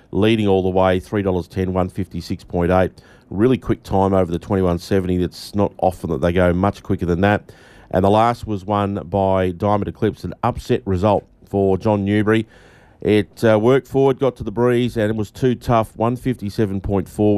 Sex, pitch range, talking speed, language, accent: male, 90-100 Hz, 175 wpm, English, Australian